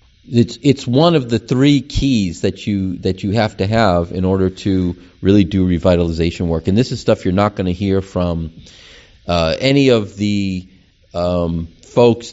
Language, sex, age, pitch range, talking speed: English, male, 40-59, 95-125 Hz, 180 wpm